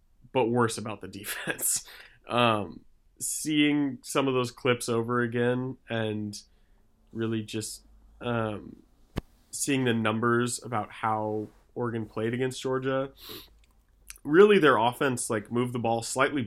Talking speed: 125 wpm